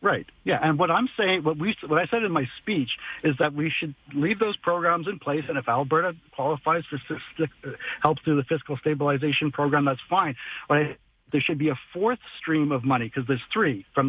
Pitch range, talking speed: 125-145 Hz, 215 wpm